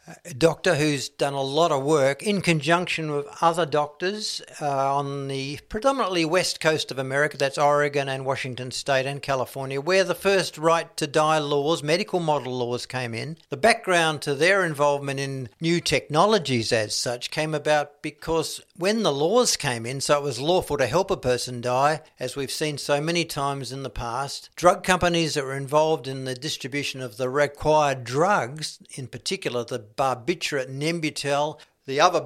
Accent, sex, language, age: Australian, male, English, 60-79